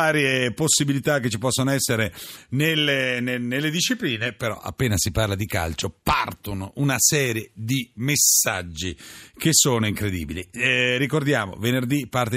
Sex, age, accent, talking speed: male, 40-59, native, 135 wpm